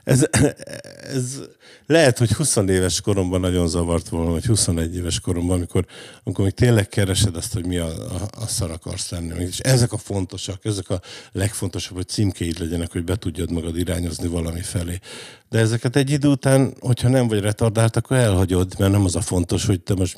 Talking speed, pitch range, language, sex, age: 190 wpm, 90-115 Hz, Hungarian, male, 50-69